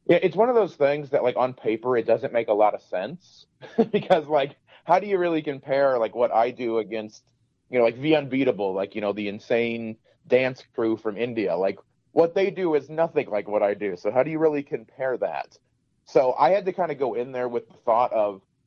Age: 30-49